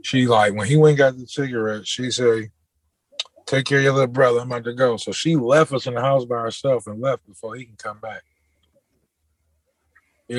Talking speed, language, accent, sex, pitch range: 220 wpm, English, American, male, 110-145 Hz